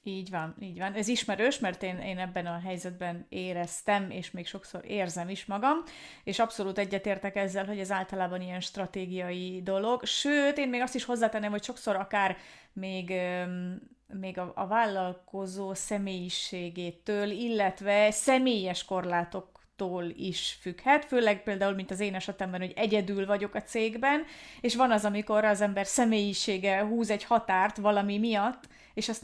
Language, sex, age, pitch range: Hungarian, female, 30-49, 190-225 Hz